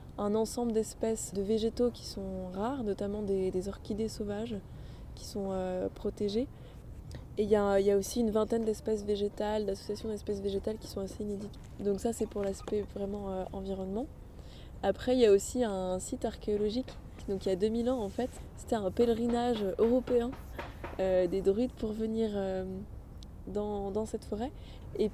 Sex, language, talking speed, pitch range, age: female, French, 175 wpm, 195-220 Hz, 20-39